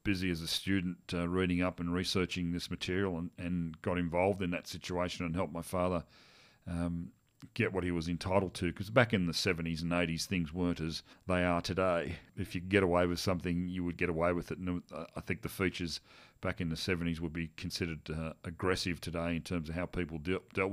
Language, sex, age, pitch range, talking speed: English, male, 40-59, 85-95 Hz, 220 wpm